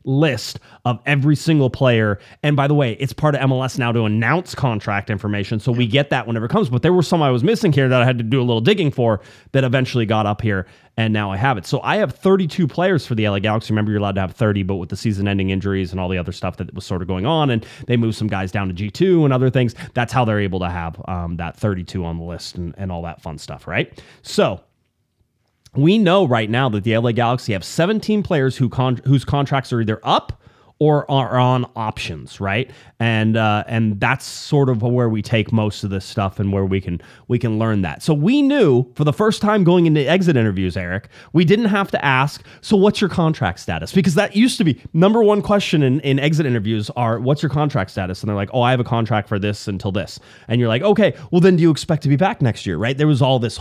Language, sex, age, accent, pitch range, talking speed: English, male, 30-49, American, 105-150 Hz, 255 wpm